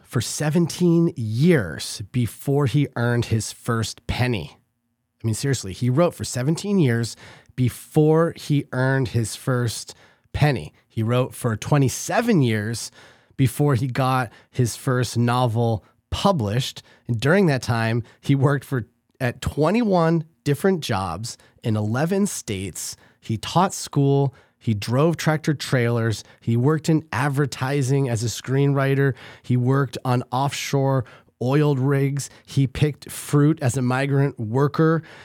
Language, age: English, 30-49